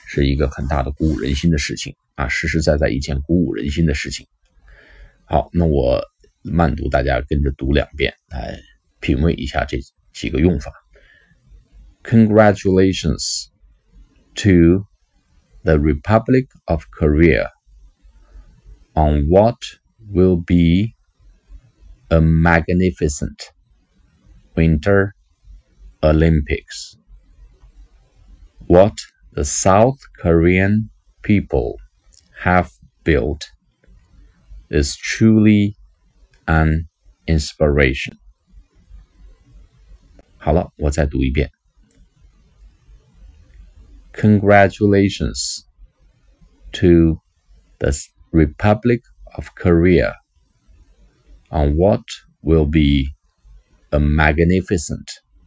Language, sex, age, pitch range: Chinese, male, 50-69, 70-90 Hz